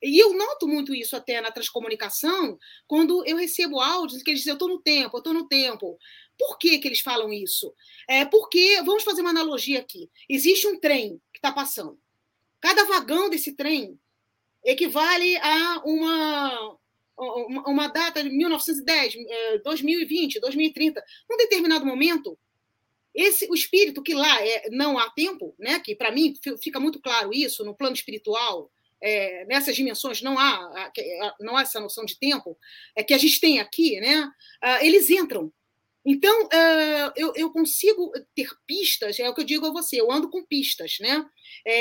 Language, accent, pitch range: English, Brazilian, 265-350 Hz